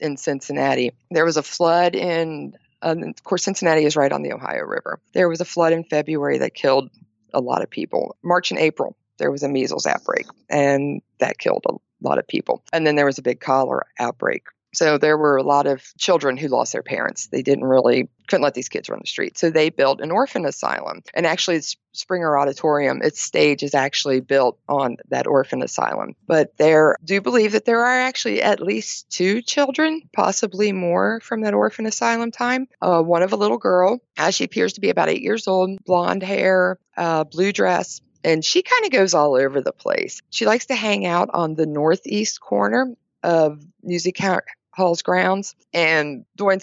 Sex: female